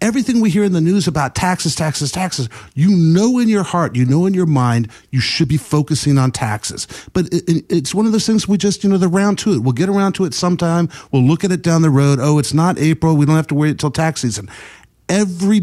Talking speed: 255 wpm